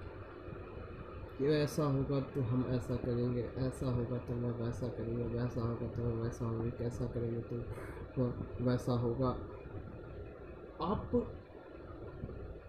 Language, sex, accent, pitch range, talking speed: Hindi, male, native, 100-135 Hz, 125 wpm